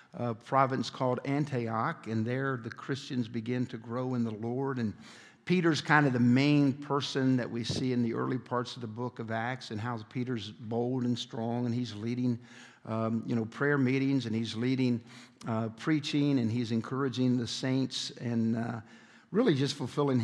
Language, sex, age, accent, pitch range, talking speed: English, male, 50-69, American, 115-140 Hz, 185 wpm